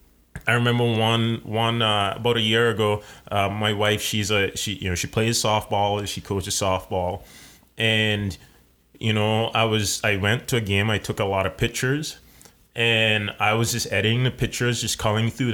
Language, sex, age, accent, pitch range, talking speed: English, male, 20-39, American, 95-115 Hz, 195 wpm